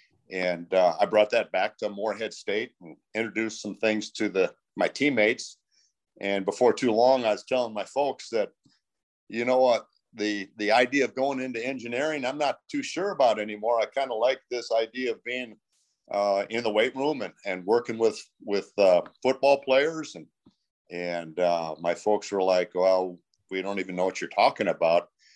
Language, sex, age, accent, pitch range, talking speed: English, male, 50-69, American, 90-115 Hz, 190 wpm